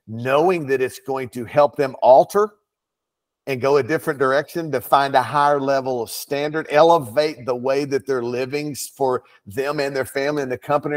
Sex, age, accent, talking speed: male, 50-69, American, 185 wpm